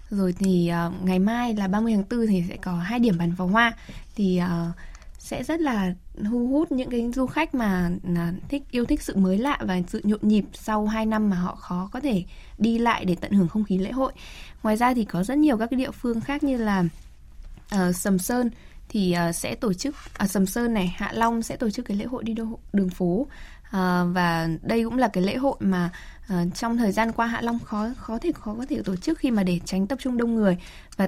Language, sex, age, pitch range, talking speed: Vietnamese, female, 10-29, 185-235 Hz, 240 wpm